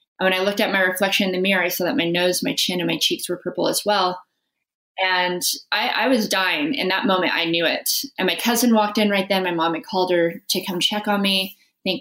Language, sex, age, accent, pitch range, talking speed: English, female, 20-39, American, 175-210 Hz, 265 wpm